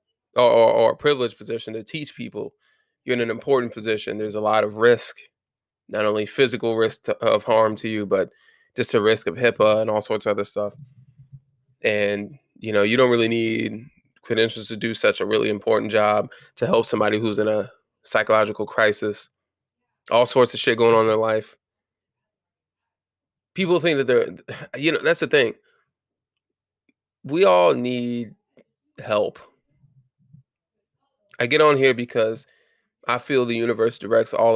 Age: 20-39